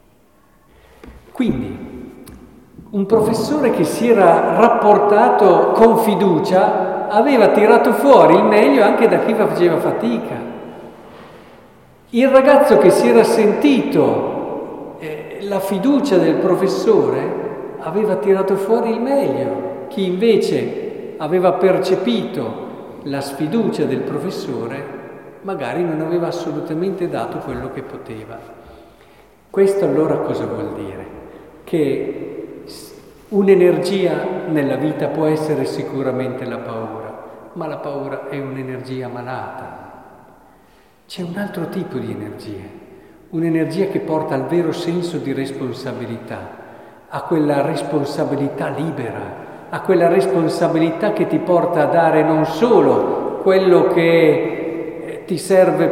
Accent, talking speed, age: native, 110 wpm, 50-69